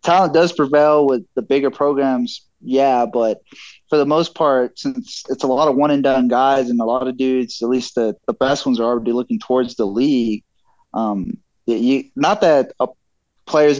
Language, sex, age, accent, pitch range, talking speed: English, male, 20-39, American, 120-155 Hz, 195 wpm